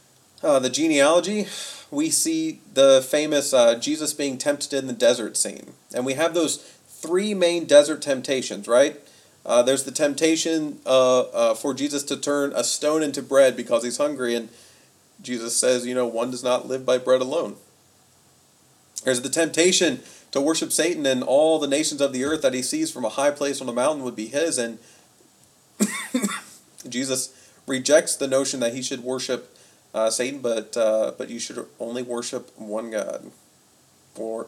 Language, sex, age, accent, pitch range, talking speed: English, male, 30-49, American, 120-155 Hz, 175 wpm